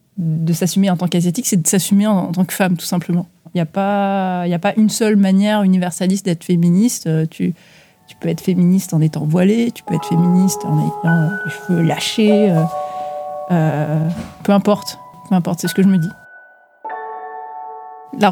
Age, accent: 30-49, French